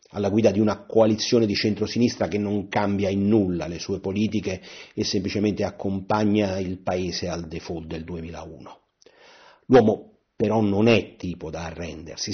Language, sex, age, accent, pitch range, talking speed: Italian, male, 40-59, native, 90-110 Hz, 150 wpm